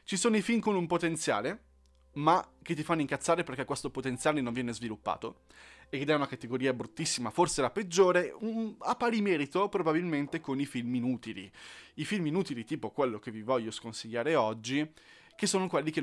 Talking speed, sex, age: 185 wpm, male, 20-39